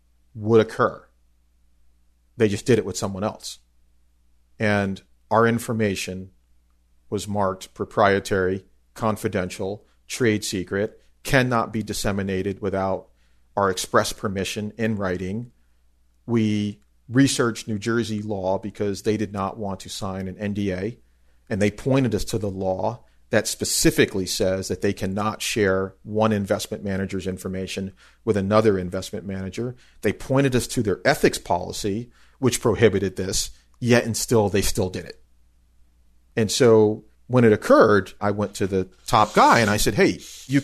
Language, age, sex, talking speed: English, 40-59, male, 140 wpm